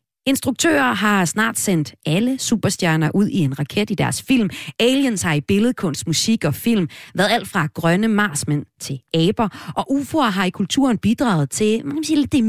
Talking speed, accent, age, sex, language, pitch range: 180 wpm, native, 30-49, female, Danish, 155-245 Hz